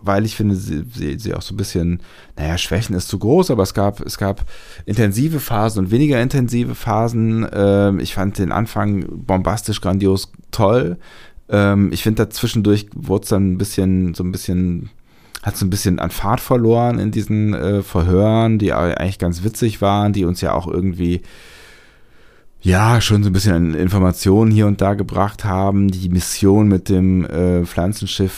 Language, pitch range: German, 90-105 Hz